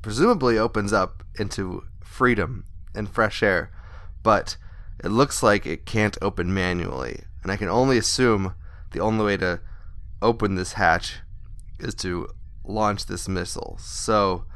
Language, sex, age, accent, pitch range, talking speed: English, male, 20-39, American, 90-110 Hz, 140 wpm